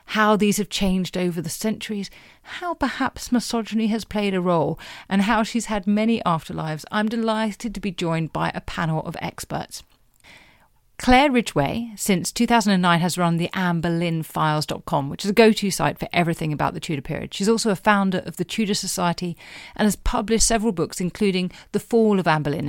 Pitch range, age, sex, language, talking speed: 175-220 Hz, 40-59, female, English, 180 wpm